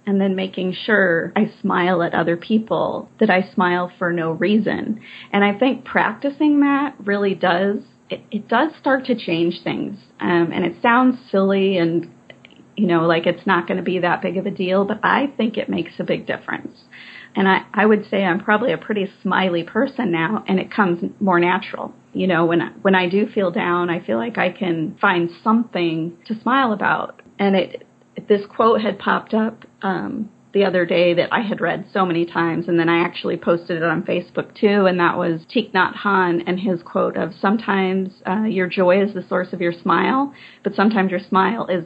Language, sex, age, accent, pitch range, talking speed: English, female, 30-49, American, 180-220 Hz, 205 wpm